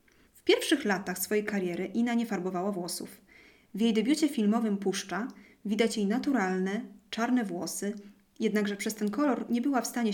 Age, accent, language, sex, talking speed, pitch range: 20-39, native, Polish, female, 160 wpm, 195-255 Hz